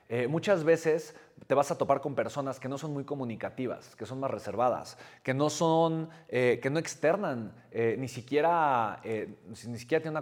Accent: Mexican